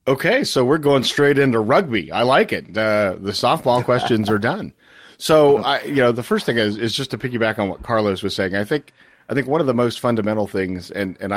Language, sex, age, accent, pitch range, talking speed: English, male, 40-59, American, 95-110 Hz, 240 wpm